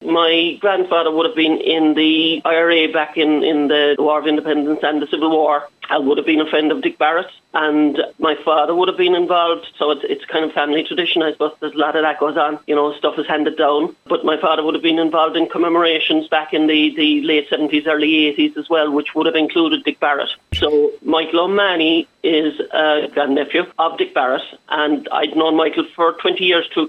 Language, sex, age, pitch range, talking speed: English, male, 40-59, 150-170 Hz, 220 wpm